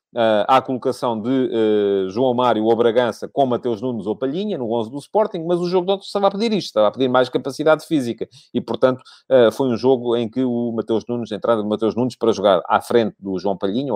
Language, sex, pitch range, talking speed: Portuguese, male, 110-145 Hz, 235 wpm